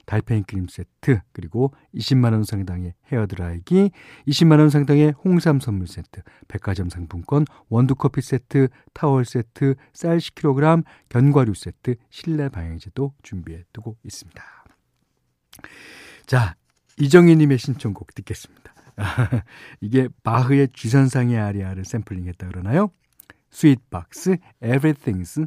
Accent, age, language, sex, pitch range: native, 50-69, Korean, male, 100-145 Hz